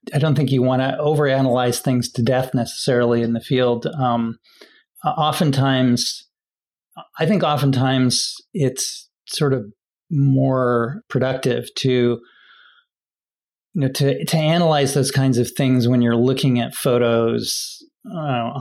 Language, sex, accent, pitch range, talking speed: English, male, American, 120-140 Hz, 130 wpm